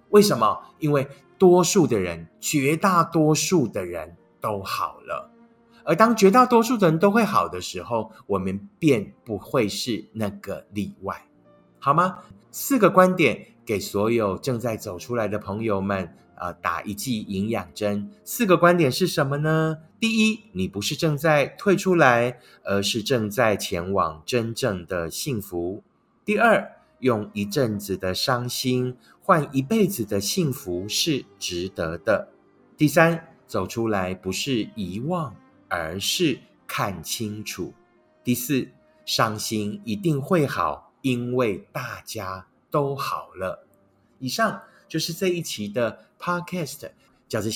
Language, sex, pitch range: Chinese, male, 100-170 Hz